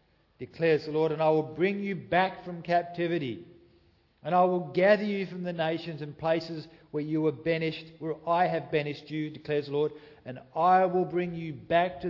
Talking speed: 200 wpm